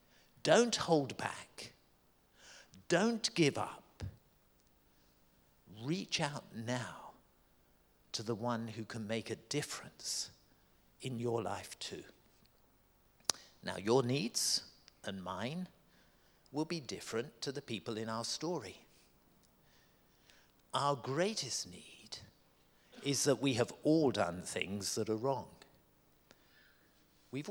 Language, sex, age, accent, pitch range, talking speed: English, male, 50-69, British, 105-160 Hz, 105 wpm